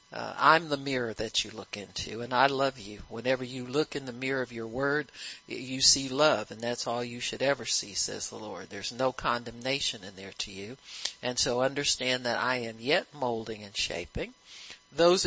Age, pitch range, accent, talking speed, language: 50-69, 115-135 Hz, American, 205 wpm, English